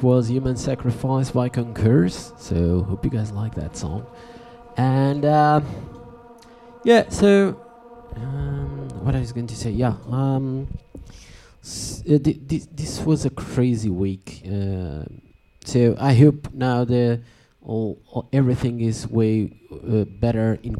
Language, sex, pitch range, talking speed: English, male, 95-125 Hz, 135 wpm